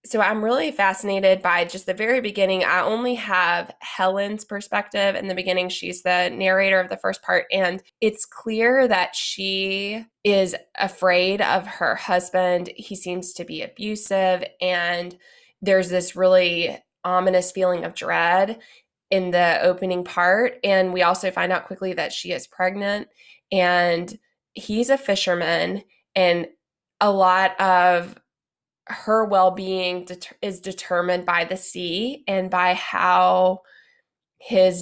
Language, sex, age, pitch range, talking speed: English, female, 20-39, 180-200 Hz, 140 wpm